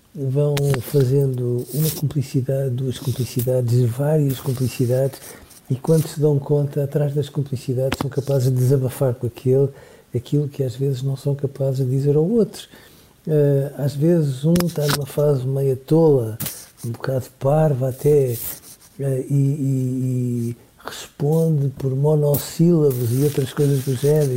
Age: 50-69